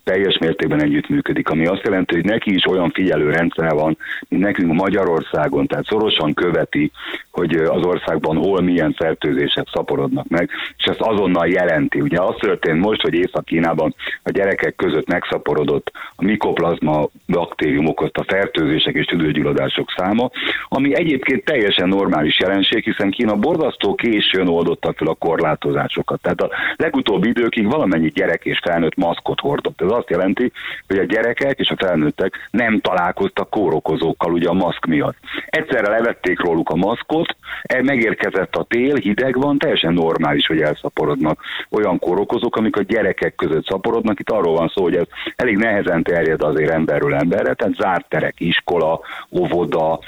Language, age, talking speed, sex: Hungarian, 50-69, 150 wpm, male